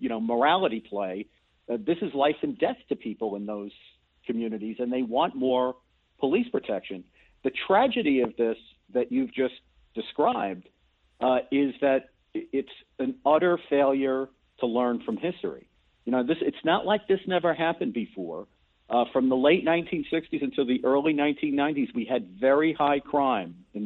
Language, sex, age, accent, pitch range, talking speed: English, male, 50-69, American, 120-155 Hz, 160 wpm